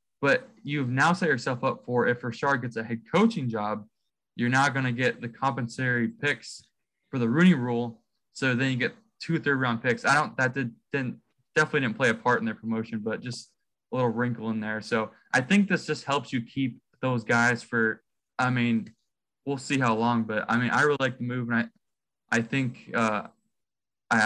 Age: 20-39